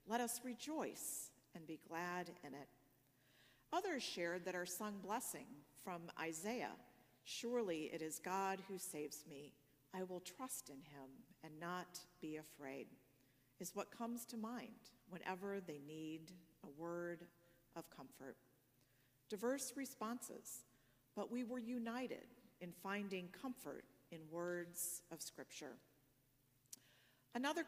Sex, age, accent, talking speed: female, 50-69, American, 125 wpm